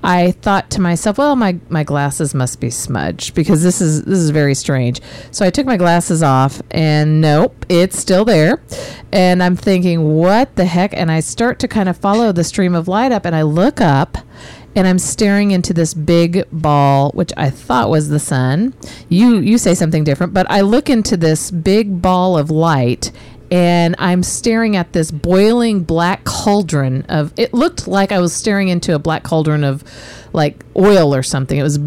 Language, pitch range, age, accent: English, 150-185 Hz, 40-59, American